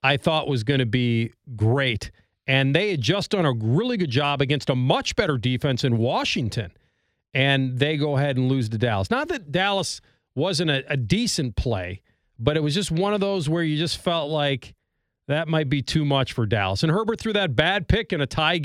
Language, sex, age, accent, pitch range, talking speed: English, male, 40-59, American, 120-170 Hz, 215 wpm